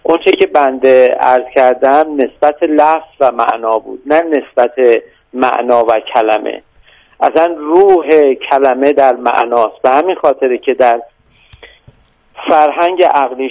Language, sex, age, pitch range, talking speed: Persian, male, 50-69, 130-185 Hz, 120 wpm